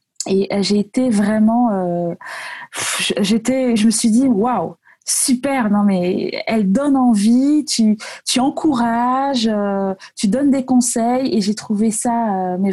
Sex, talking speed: female, 145 wpm